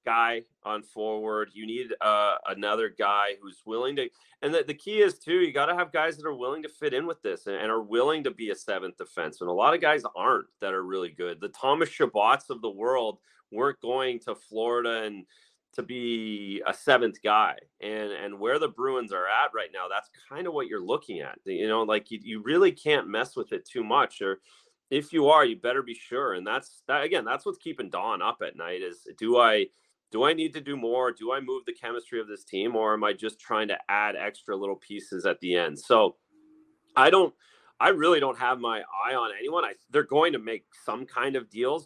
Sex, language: male, English